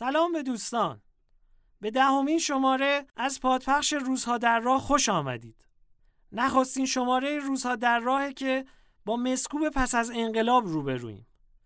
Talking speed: 140 wpm